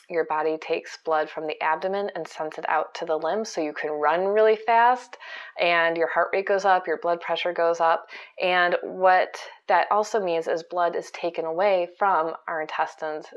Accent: American